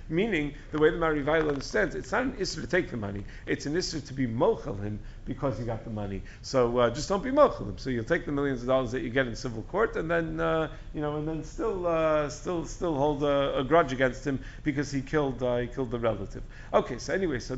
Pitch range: 125-160 Hz